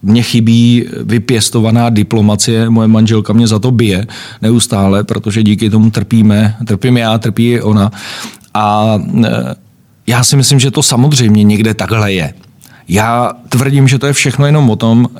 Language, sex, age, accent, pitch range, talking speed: Czech, male, 40-59, native, 110-125 Hz, 155 wpm